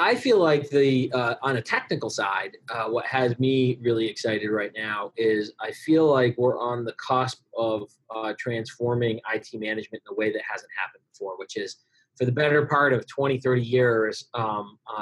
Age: 30-49